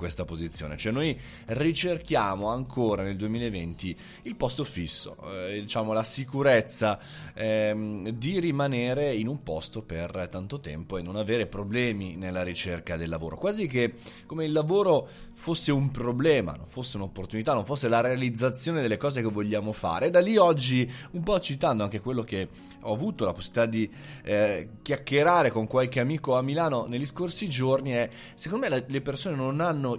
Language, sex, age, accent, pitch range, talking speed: Italian, male, 20-39, native, 100-140 Hz, 165 wpm